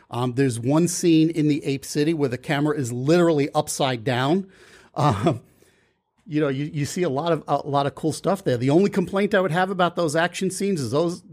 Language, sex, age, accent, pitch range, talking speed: English, male, 50-69, American, 130-170 Hz, 220 wpm